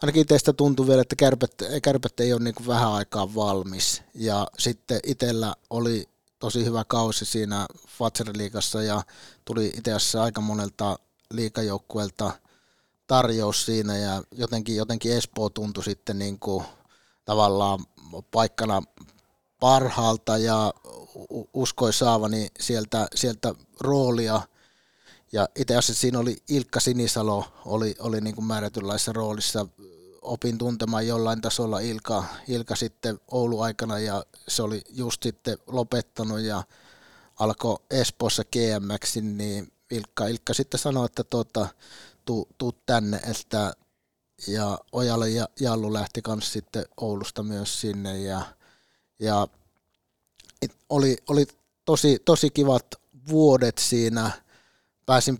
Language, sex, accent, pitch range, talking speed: Finnish, male, native, 105-120 Hz, 120 wpm